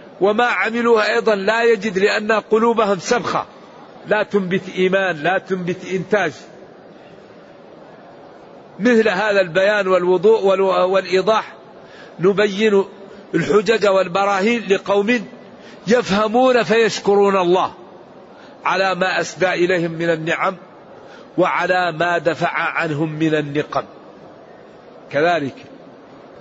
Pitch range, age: 170-210 Hz, 50-69